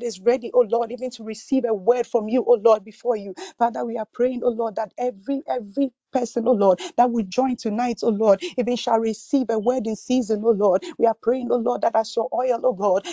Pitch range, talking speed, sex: 225-255 Hz, 255 wpm, female